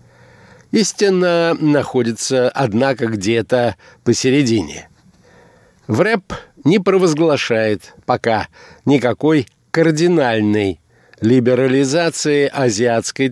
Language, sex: Russian, male